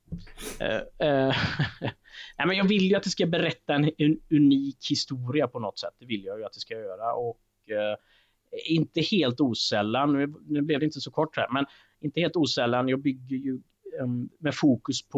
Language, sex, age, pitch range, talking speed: Swedish, male, 30-49, 115-160 Hz, 190 wpm